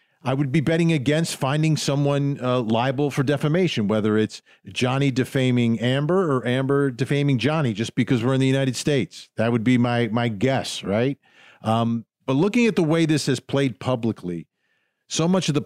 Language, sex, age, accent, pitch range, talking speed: English, male, 50-69, American, 115-145 Hz, 185 wpm